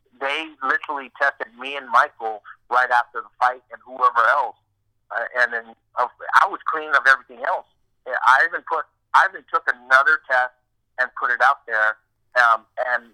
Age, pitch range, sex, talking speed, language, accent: 50-69, 115-140 Hz, male, 170 wpm, English, American